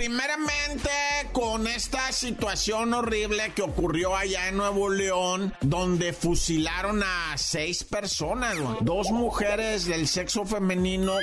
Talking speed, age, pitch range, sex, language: 110 wpm, 50-69, 155-210 Hz, male, Spanish